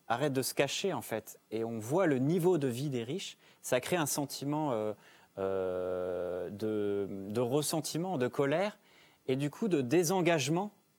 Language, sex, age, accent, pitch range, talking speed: French, male, 30-49, French, 120-155 Hz, 170 wpm